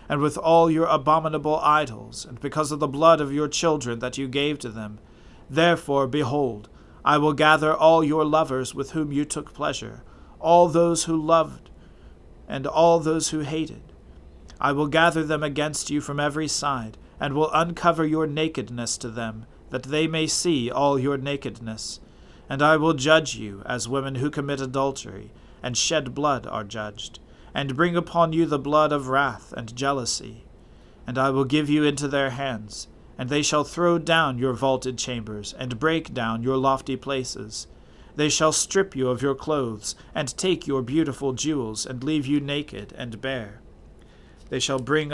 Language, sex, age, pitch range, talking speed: English, male, 40-59, 120-155 Hz, 175 wpm